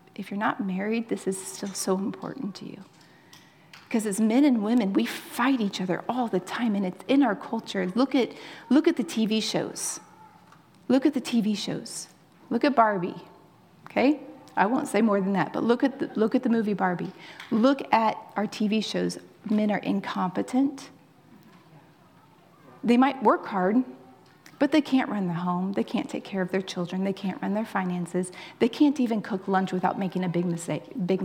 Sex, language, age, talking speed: female, English, 30-49, 190 wpm